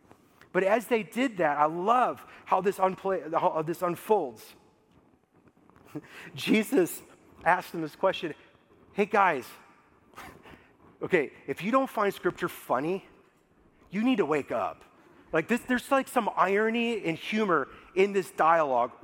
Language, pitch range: English, 190-250 Hz